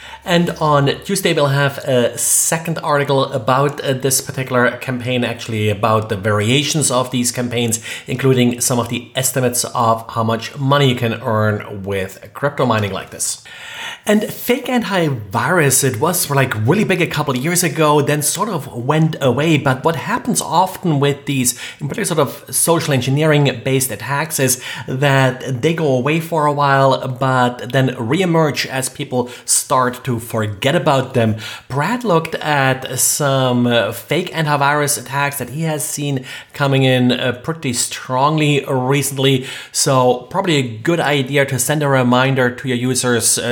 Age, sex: 30-49, male